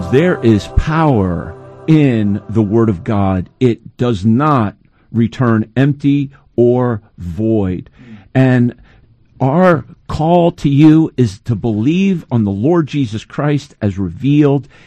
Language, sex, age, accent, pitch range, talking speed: English, male, 50-69, American, 115-165 Hz, 120 wpm